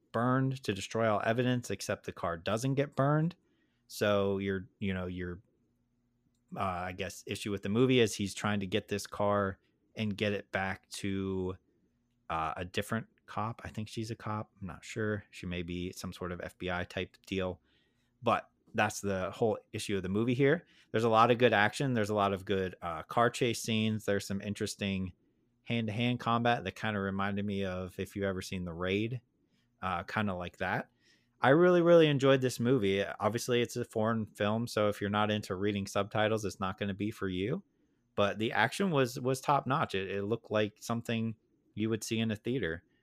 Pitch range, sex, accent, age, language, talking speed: 95-120 Hz, male, American, 30-49, English, 205 wpm